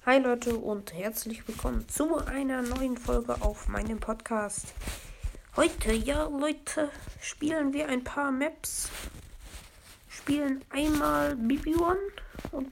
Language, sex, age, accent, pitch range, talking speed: German, female, 20-39, German, 195-245 Hz, 120 wpm